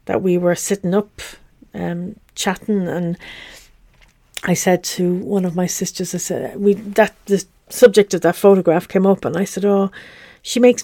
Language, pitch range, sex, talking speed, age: English, 185-225 Hz, female, 185 wpm, 50-69